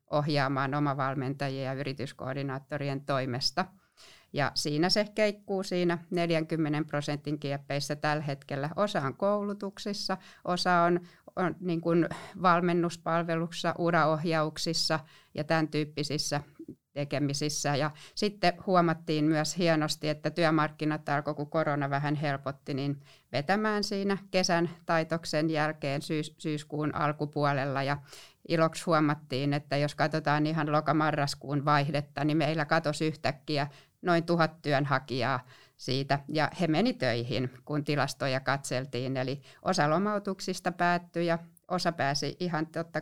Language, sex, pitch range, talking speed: Finnish, female, 145-170 Hz, 115 wpm